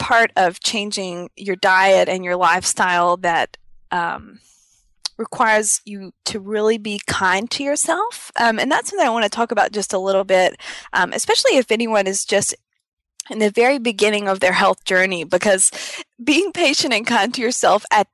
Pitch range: 190-250 Hz